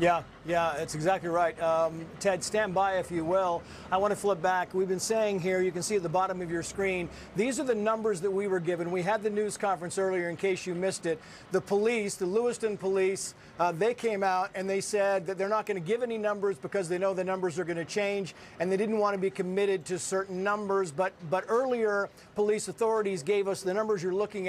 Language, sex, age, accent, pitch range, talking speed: English, male, 50-69, American, 185-210 Hz, 245 wpm